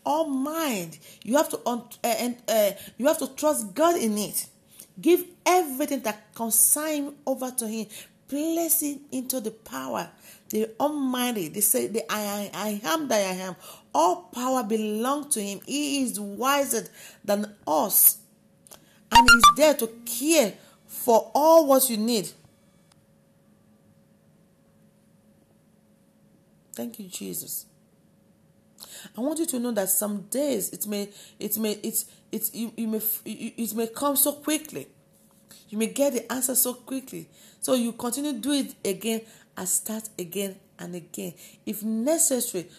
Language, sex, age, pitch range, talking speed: English, female, 40-59, 205-275 Hz, 145 wpm